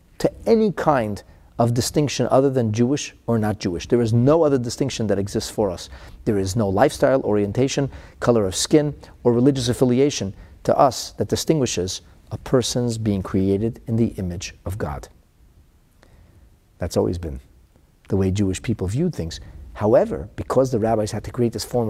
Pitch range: 95-130 Hz